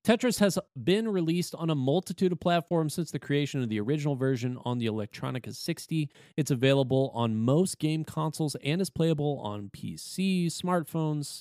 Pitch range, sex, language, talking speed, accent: 130-180 Hz, male, English, 170 wpm, American